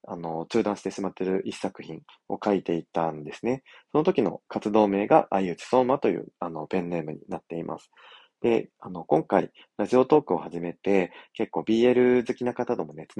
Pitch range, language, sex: 85-120 Hz, Japanese, male